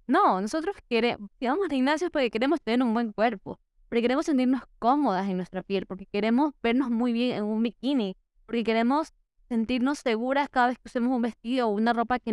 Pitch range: 230-275 Hz